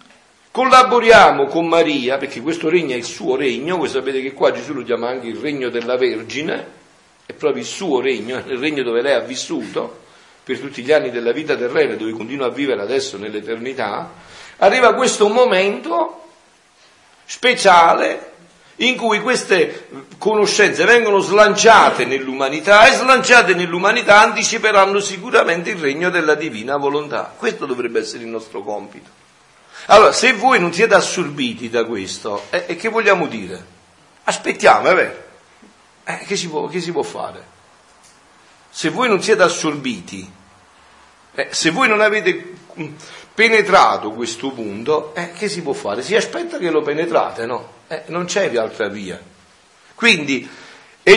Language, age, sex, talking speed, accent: Italian, 50-69, male, 150 wpm, native